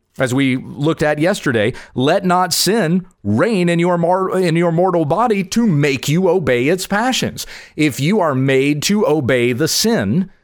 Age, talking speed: 40-59, 170 wpm